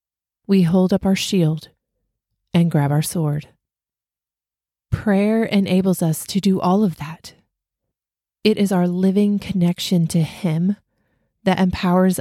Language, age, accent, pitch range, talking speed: English, 30-49, American, 165-195 Hz, 130 wpm